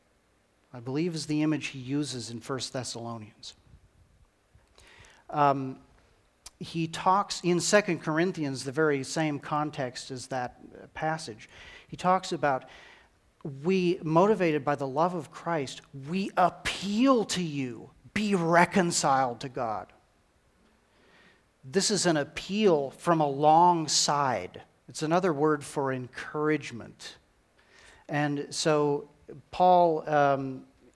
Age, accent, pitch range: 40-59, American, 135-170 Hz